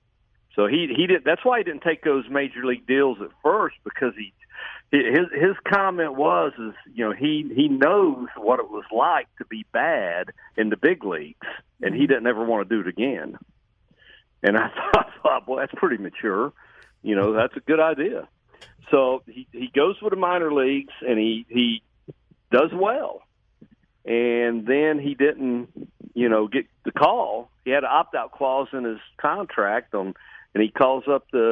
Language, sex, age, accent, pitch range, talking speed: English, male, 50-69, American, 110-135 Hz, 190 wpm